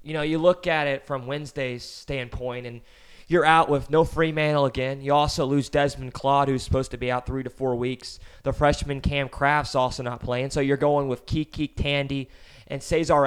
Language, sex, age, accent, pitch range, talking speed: English, male, 20-39, American, 135-165 Hz, 205 wpm